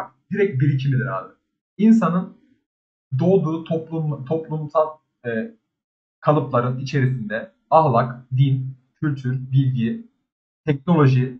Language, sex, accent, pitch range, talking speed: Turkish, male, native, 135-195 Hz, 80 wpm